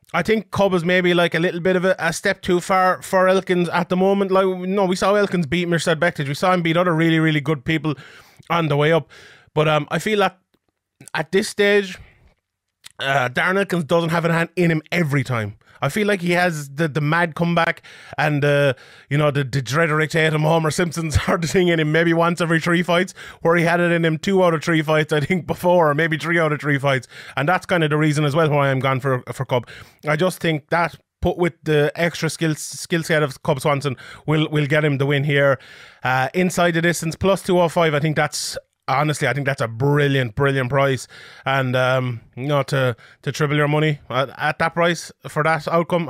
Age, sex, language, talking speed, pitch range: 30-49, male, English, 235 wpm, 145-175 Hz